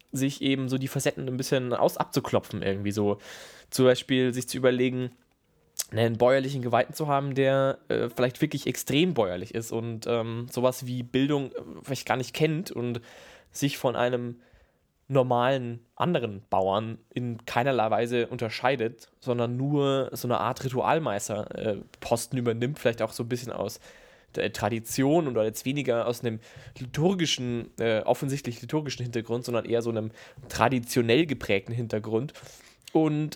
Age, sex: 20-39, male